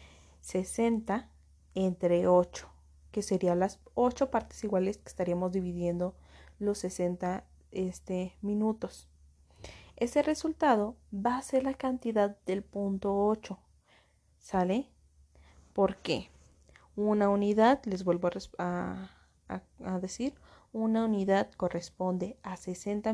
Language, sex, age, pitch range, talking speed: Spanish, female, 30-49, 180-230 Hz, 105 wpm